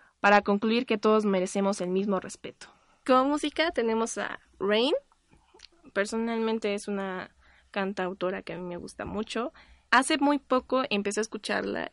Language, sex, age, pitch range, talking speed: Spanish, female, 20-39, 195-240 Hz, 145 wpm